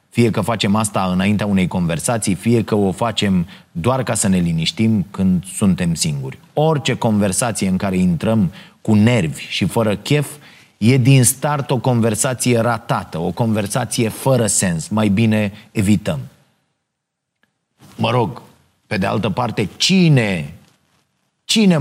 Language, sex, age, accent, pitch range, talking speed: Romanian, male, 30-49, native, 110-140 Hz, 140 wpm